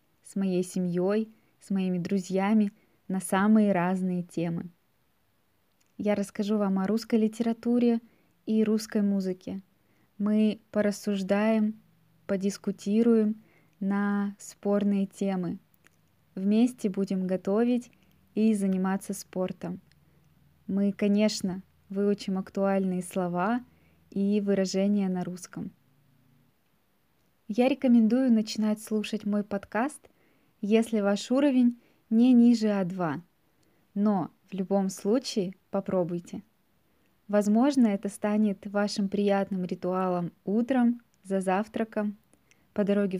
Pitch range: 190-220 Hz